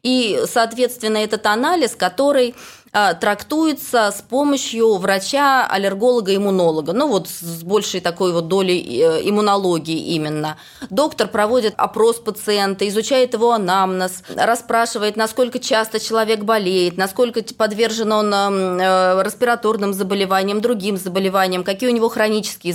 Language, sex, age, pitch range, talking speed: Russian, female, 20-39, 185-235 Hz, 110 wpm